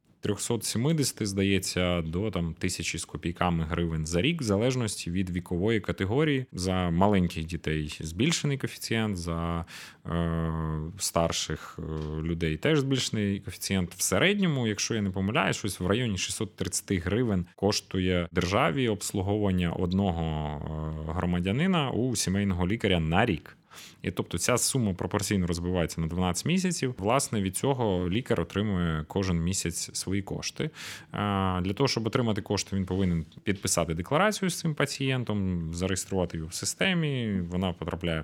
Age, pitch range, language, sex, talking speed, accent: 30-49, 85-115 Hz, Ukrainian, male, 130 wpm, native